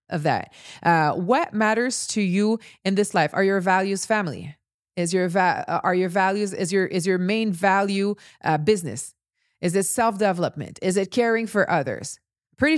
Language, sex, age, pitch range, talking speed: English, female, 30-49, 185-225 Hz, 175 wpm